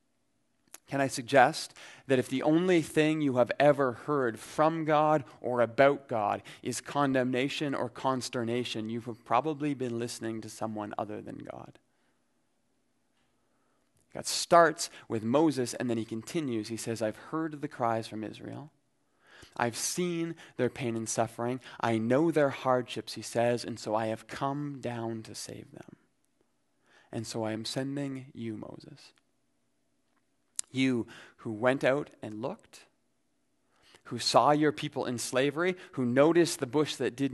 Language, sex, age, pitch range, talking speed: English, male, 30-49, 115-145 Hz, 150 wpm